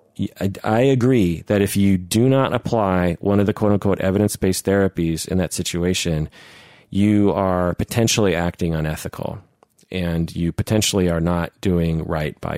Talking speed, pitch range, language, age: 145 wpm, 85-110 Hz, English, 40-59